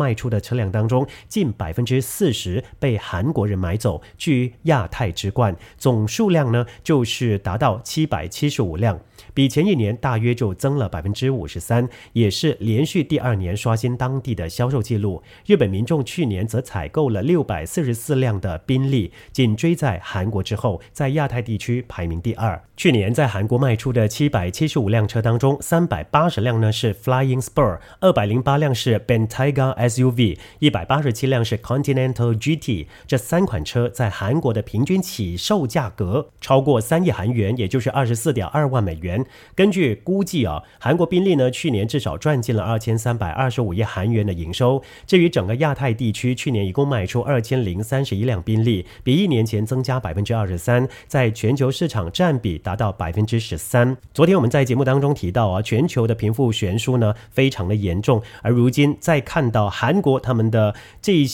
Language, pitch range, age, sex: English, 105-135 Hz, 40-59, male